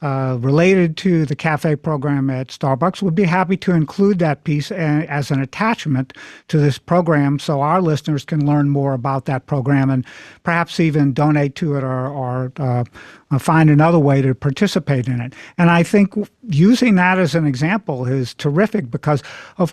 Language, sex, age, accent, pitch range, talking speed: English, male, 50-69, American, 140-180 Hz, 175 wpm